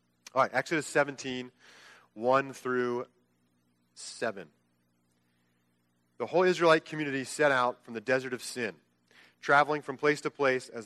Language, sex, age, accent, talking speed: English, male, 30-49, American, 135 wpm